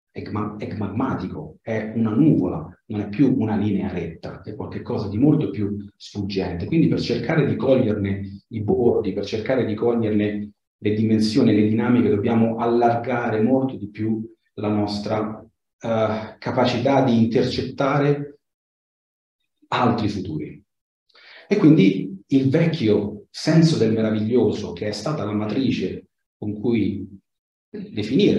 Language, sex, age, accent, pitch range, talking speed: Italian, male, 40-59, native, 105-130 Hz, 125 wpm